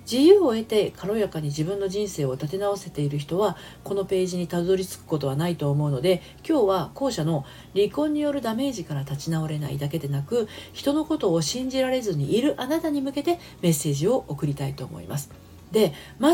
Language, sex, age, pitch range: Japanese, female, 40-59, 155-230 Hz